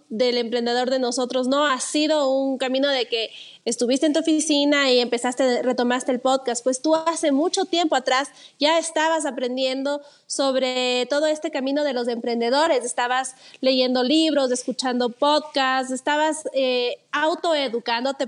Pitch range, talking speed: 255-305 Hz, 145 wpm